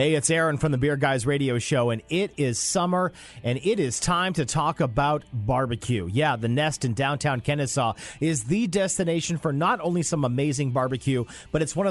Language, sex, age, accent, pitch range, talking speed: English, male, 40-59, American, 140-190 Hz, 195 wpm